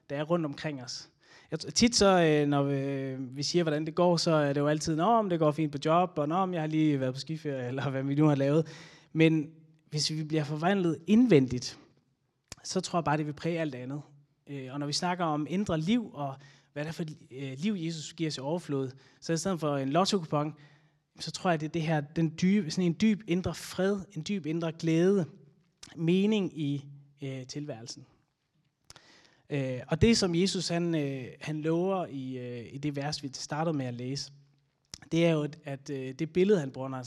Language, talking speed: Danish, 205 wpm